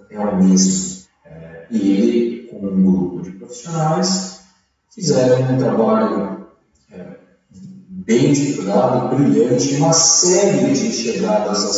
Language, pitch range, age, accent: Portuguese, 110-160 Hz, 40-59, Brazilian